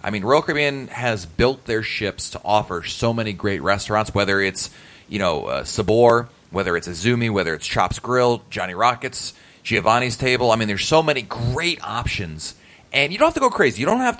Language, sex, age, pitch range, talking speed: English, male, 30-49, 105-145 Hz, 205 wpm